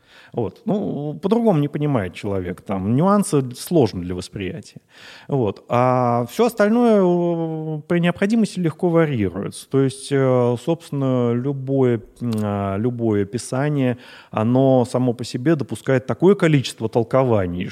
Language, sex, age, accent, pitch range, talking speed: Russian, male, 30-49, native, 105-140 Hz, 100 wpm